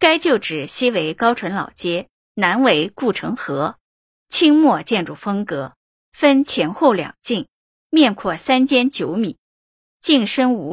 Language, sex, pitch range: Chinese, female, 195-270 Hz